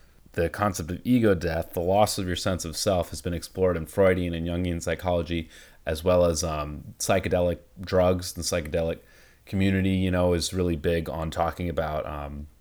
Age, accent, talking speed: 30-49, American, 180 wpm